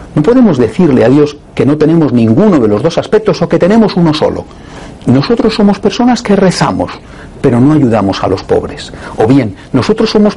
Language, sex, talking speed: Spanish, male, 190 wpm